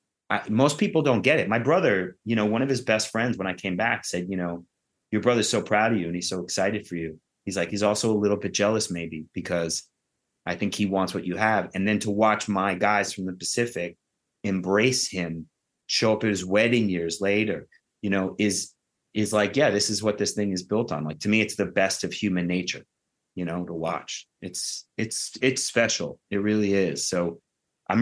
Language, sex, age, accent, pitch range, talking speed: English, male, 30-49, American, 90-110 Hz, 225 wpm